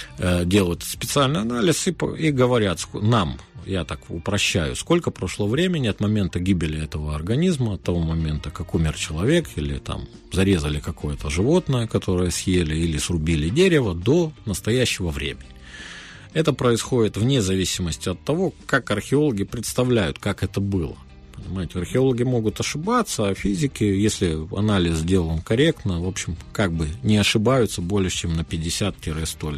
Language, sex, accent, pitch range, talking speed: Russian, male, native, 85-115 Hz, 140 wpm